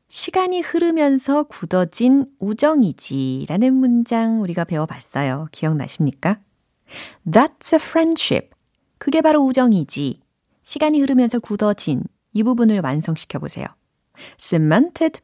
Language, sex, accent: Korean, female, native